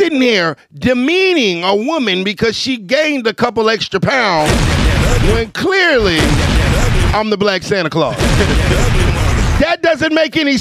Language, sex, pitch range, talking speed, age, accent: English, male, 175-295 Hz, 130 wpm, 50-69, American